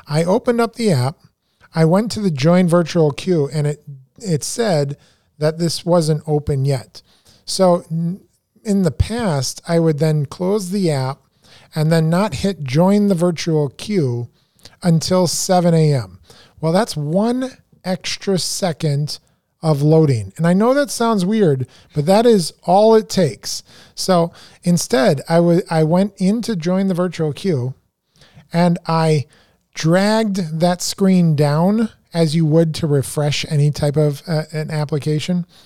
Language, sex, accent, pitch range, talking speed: English, male, American, 140-185 Hz, 150 wpm